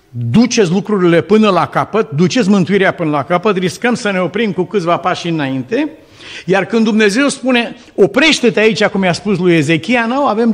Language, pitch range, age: Romanian, 140-205 Hz, 50-69